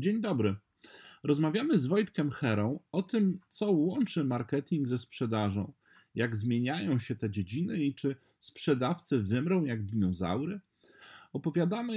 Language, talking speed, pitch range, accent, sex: Polish, 125 wpm, 125-170 Hz, native, male